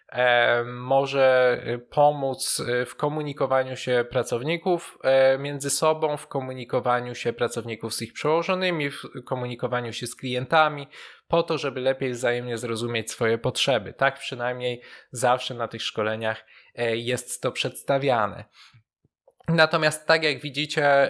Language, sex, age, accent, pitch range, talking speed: Polish, male, 20-39, native, 120-140 Hz, 115 wpm